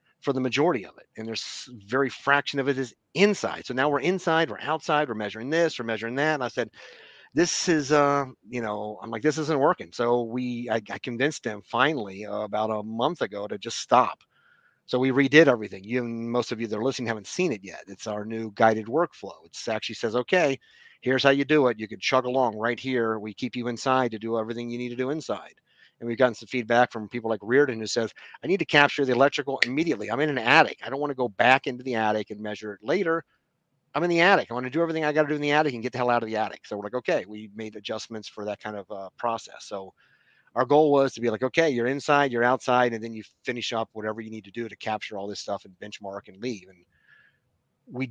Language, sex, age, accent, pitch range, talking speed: English, male, 40-59, American, 110-140 Hz, 255 wpm